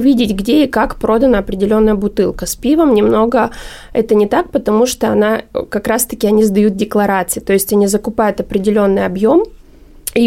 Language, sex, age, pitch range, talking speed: Russian, female, 20-39, 200-235 Hz, 170 wpm